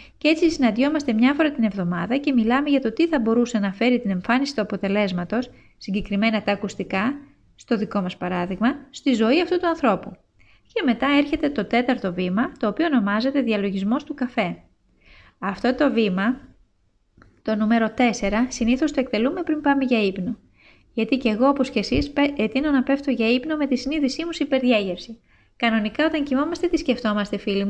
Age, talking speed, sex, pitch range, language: 20-39, 170 wpm, female, 210-270 Hz, Greek